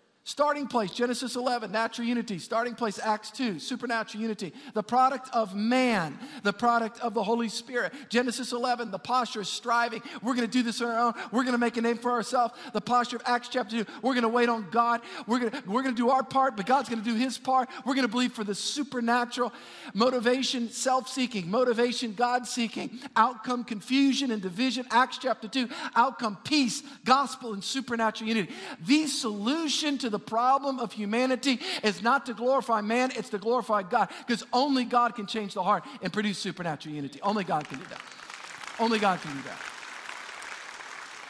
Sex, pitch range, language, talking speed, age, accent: male, 215-255 Hz, English, 190 wpm, 50-69, American